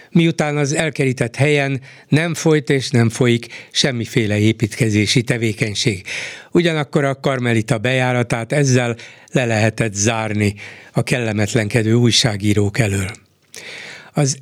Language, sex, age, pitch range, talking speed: Hungarian, male, 60-79, 115-145 Hz, 105 wpm